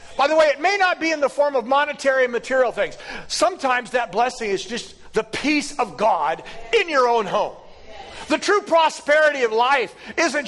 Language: English